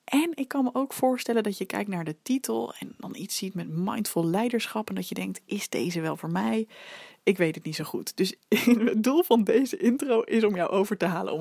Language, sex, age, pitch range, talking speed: Dutch, female, 20-39, 175-230 Hz, 245 wpm